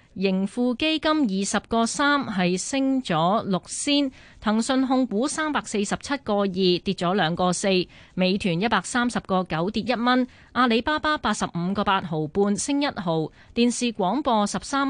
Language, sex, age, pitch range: Chinese, female, 20-39, 185-250 Hz